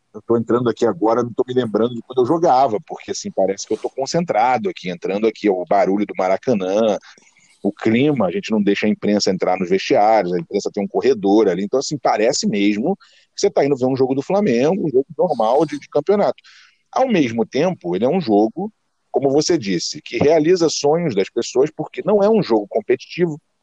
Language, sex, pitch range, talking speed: Portuguese, male, 120-190 Hz, 215 wpm